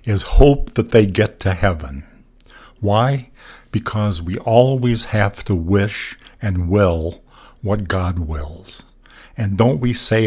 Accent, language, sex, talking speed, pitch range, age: American, English, male, 135 wpm, 95-115 Hz, 60-79